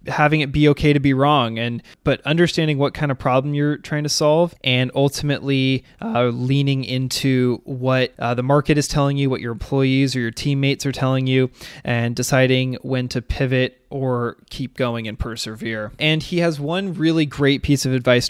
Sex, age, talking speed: male, 20-39, 190 wpm